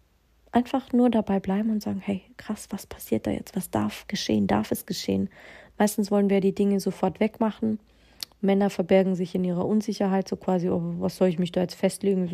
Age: 30-49